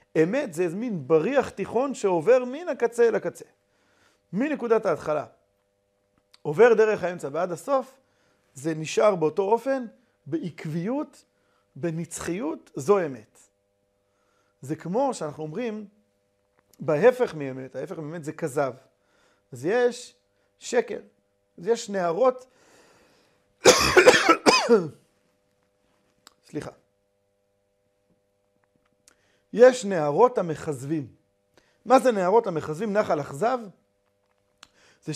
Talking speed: 90 wpm